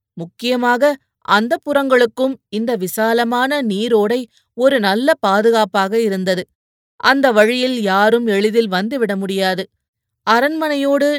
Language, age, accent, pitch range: Tamil, 30-49, native, 200-260 Hz